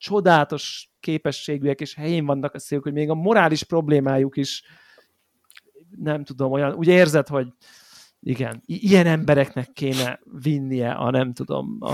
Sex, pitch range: male, 130-155 Hz